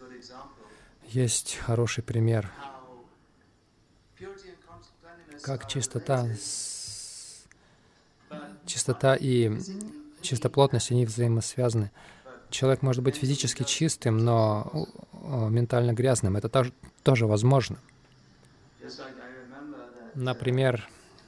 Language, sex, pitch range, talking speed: Russian, male, 110-135 Hz, 65 wpm